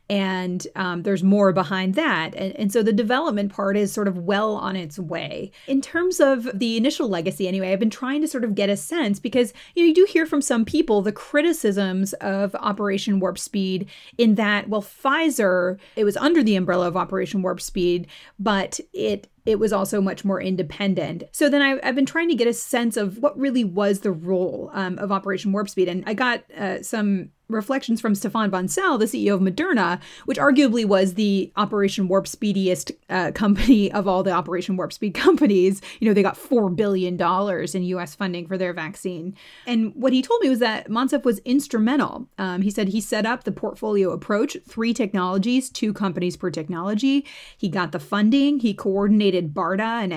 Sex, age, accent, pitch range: female, 30-49, American, 185-235 Hz